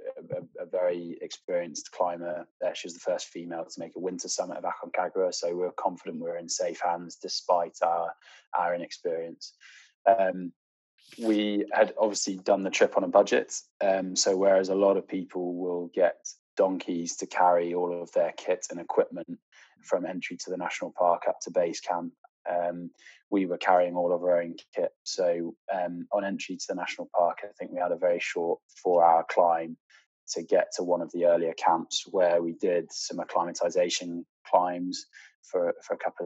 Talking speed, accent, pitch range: 185 wpm, British, 85-105 Hz